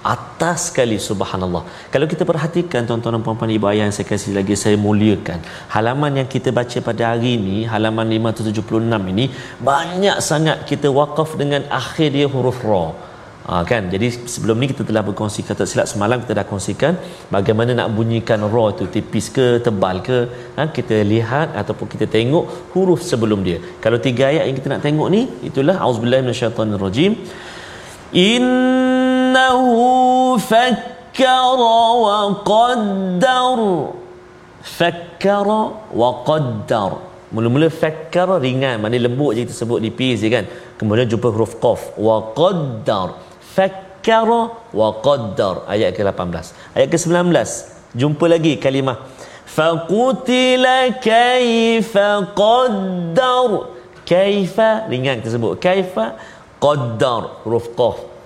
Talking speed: 130 wpm